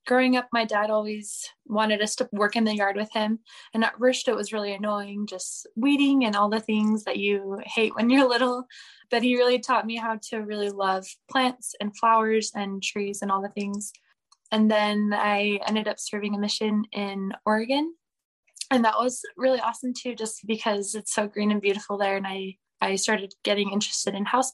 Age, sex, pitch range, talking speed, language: 10-29, female, 200-235 Hz, 205 wpm, English